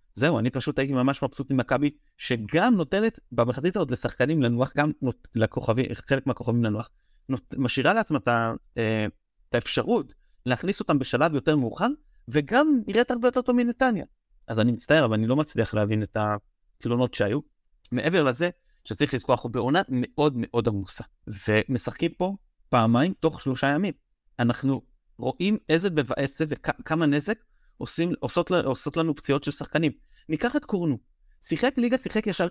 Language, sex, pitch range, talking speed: Hebrew, male, 115-190 Hz, 150 wpm